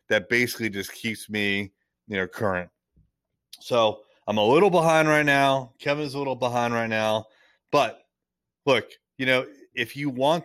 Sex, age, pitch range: male, 30-49, 110-145 Hz